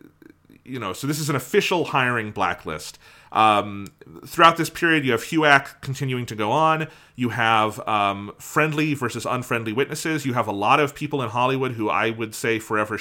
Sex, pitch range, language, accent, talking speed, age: male, 110-140 Hz, English, American, 185 wpm, 30-49